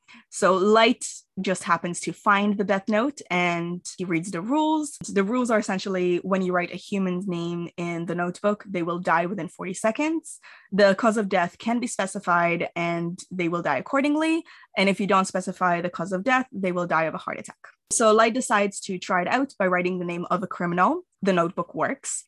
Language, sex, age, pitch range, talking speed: English, female, 20-39, 175-225 Hz, 210 wpm